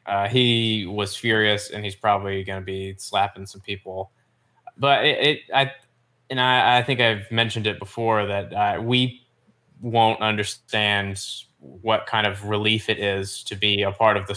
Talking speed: 175 wpm